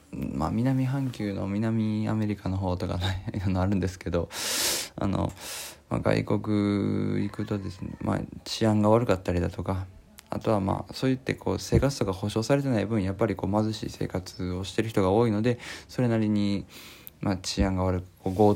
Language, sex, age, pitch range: Japanese, male, 20-39, 95-110 Hz